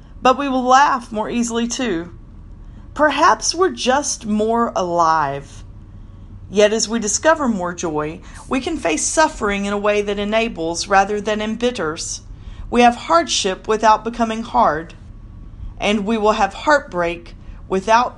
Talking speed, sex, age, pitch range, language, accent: 140 wpm, female, 40-59, 175-235 Hz, English, American